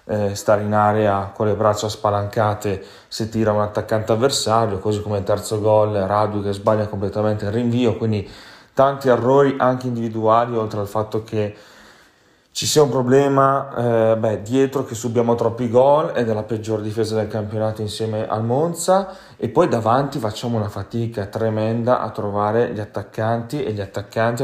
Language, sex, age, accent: Italian, male, 30-49, native